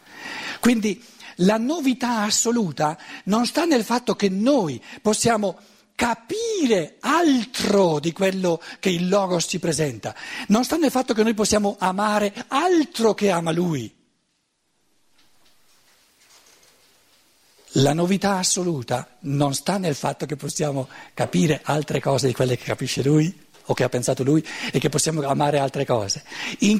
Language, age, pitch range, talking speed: Italian, 50-69, 135-225 Hz, 135 wpm